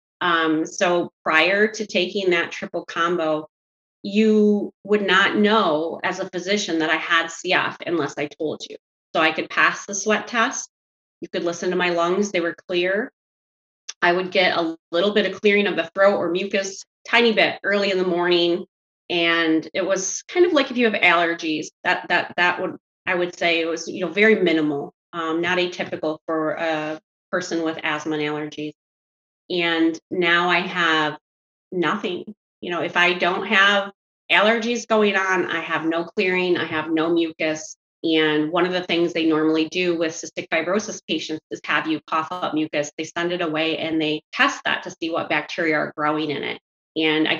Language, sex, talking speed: English, female, 190 wpm